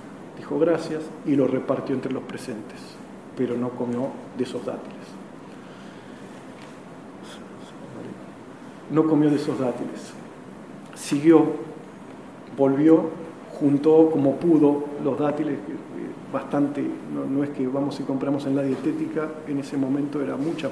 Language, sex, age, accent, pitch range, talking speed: Spanish, male, 40-59, Argentinian, 135-160 Hz, 120 wpm